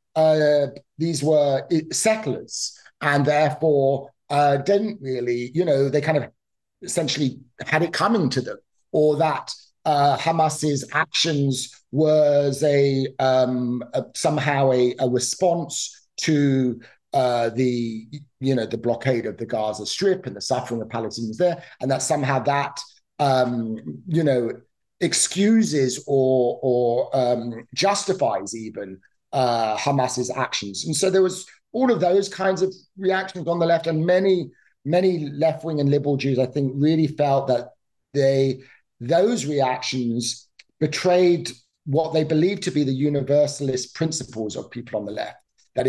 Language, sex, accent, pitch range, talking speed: English, male, British, 130-160 Hz, 145 wpm